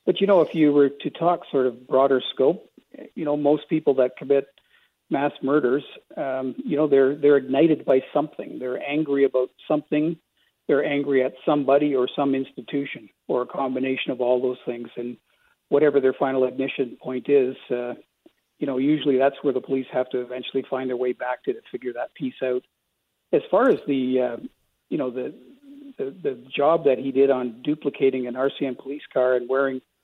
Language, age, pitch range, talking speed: English, 50-69, 125-145 Hz, 190 wpm